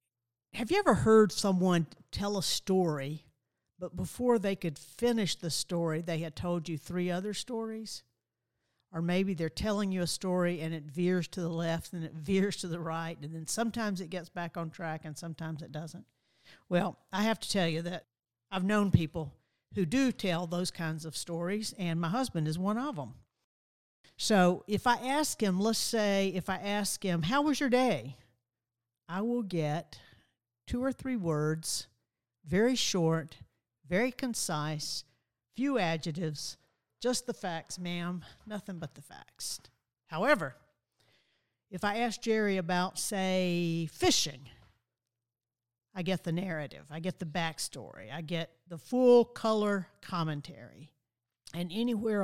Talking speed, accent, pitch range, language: 155 wpm, American, 150-200 Hz, English